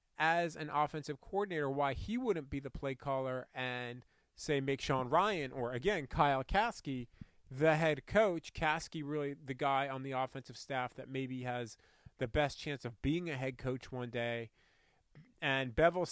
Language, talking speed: English, 170 wpm